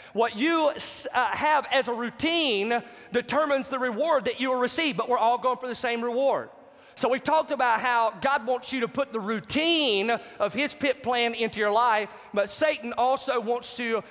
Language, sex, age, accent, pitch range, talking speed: English, male, 30-49, American, 215-265 Hz, 195 wpm